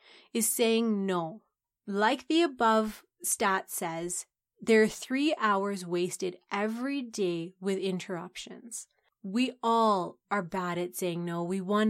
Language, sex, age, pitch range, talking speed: English, female, 30-49, 185-230 Hz, 130 wpm